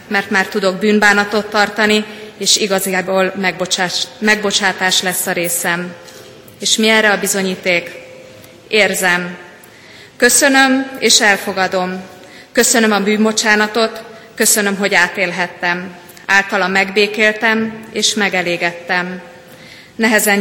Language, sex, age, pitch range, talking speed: Hungarian, female, 30-49, 185-220 Hz, 90 wpm